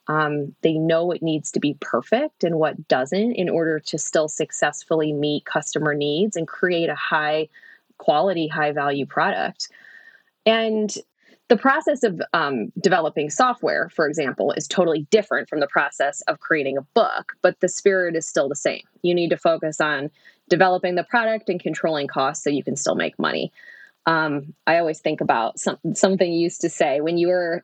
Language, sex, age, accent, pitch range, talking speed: English, female, 20-39, American, 150-195 Hz, 180 wpm